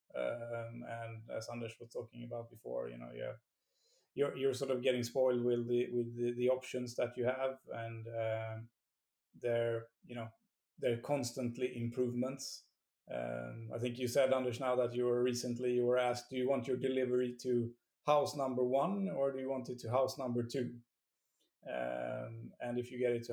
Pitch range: 120-130 Hz